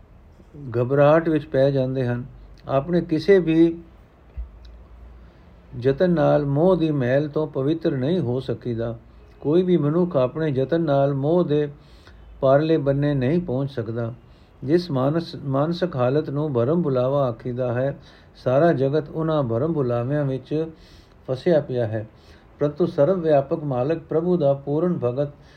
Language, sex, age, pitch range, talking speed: Punjabi, male, 60-79, 125-160 Hz, 130 wpm